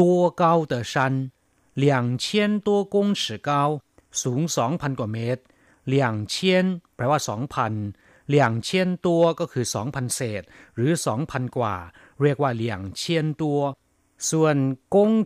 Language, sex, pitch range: Thai, male, 115-155 Hz